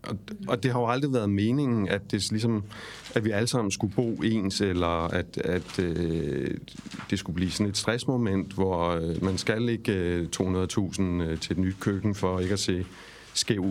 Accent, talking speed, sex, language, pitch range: native, 180 wpm, male, Danish, 90-115 Hz